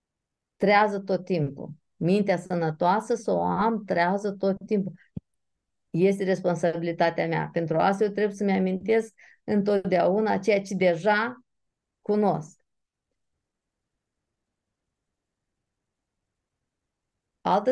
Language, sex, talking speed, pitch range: Romanian, female, 90 wpm, 170-220 Hz